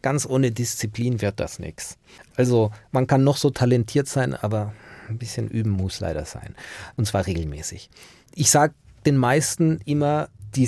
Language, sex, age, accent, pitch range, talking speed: German, male, 40-59, German, 110-150 Hz, 165 wpm